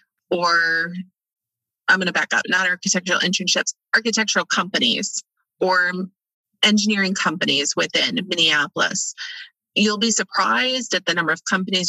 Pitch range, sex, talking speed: 175-210 Hz, female, 120 wpm